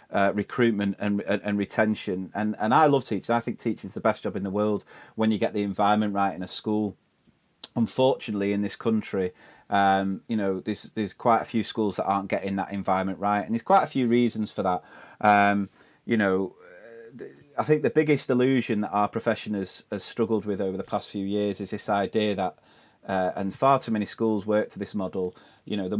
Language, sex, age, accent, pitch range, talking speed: English, male, 30-49, British, 100-110 Hz, 215 wpm